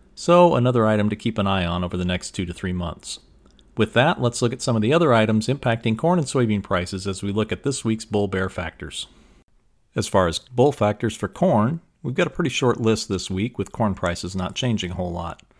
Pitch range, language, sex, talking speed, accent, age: 95-120 Hz, English, male, 240 wpm, American, 40-59